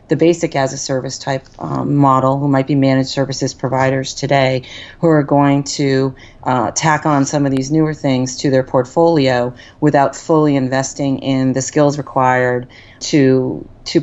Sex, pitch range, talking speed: female, 130-145 Hz, 165 wpm